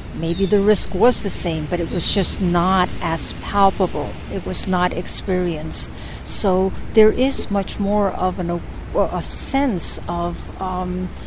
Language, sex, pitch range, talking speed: English, female, 175-215 Hz, 150 wpm